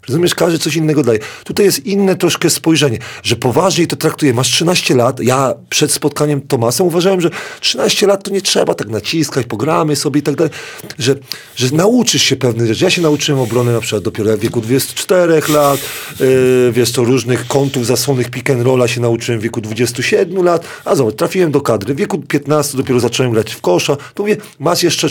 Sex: male